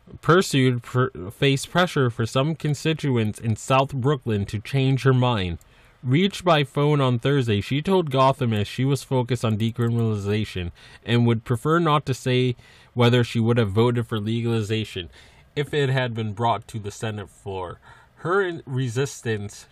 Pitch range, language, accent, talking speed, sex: 105-130 Hz, English, American, 160 wpm, male